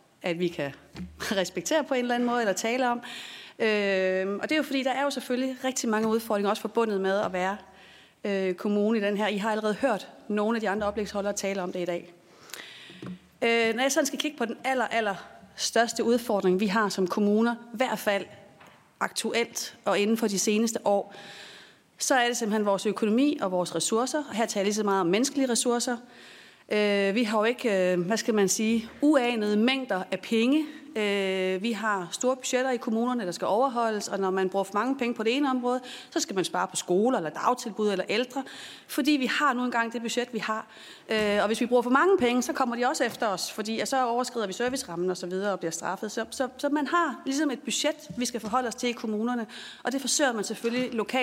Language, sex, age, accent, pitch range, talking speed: Danish, female, 30-49, native, 200-250 Hz, 210 wpm